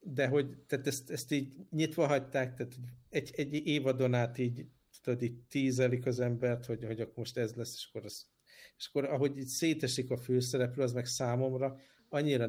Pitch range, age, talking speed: 115-130 Hz, 50-69, 185 wpm